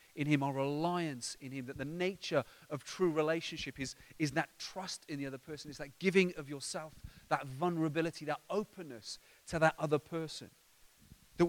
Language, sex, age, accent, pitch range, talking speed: English, male, 30-49, British, 135-180 Hz, 180 wpm